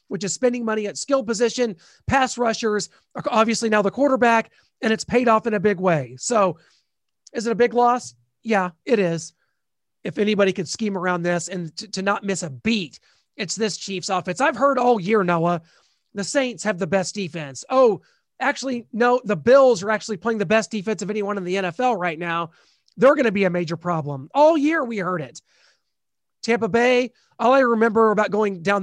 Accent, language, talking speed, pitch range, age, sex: American, English, 200 wpm, 190-245 Hz, 30-49, male